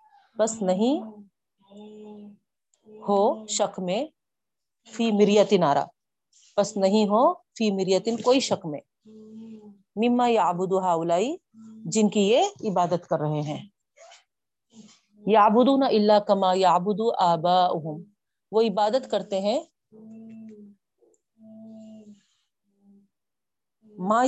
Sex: female